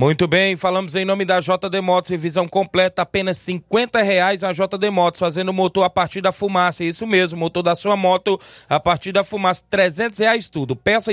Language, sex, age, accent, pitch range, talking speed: Portuguese, male, 20-39, Brazilian, 170-215 Hz, 200 wpm